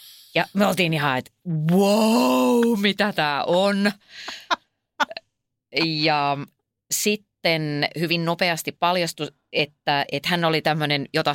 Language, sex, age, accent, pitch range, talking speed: Finnish, female, 30-49, native, 140-195 Hz, 105 wpm